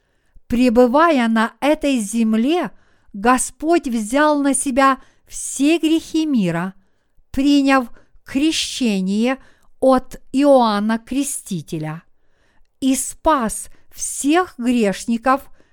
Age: 50-69